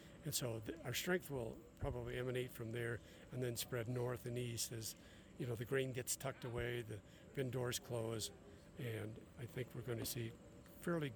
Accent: American